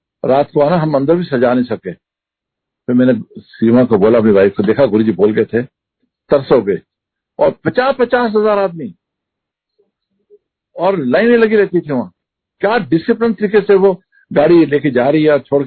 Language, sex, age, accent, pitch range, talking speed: Hindi, male, 60-79, native, 130-215 Hz, 170 wpm